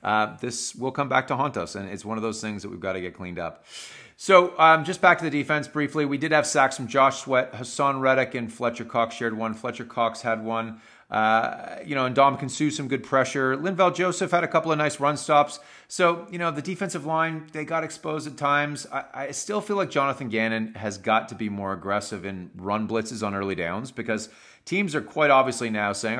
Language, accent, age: English, American, 30-49